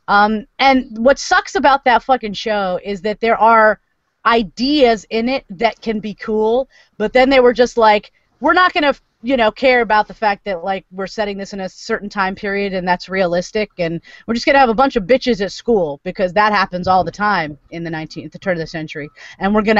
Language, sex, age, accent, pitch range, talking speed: English, female, 30-49, American, 190-275 Hz, 235 wpm